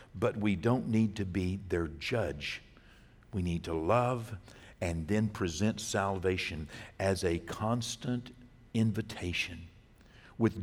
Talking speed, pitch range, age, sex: 120 wpm, 100-125 Hz, 60-79, male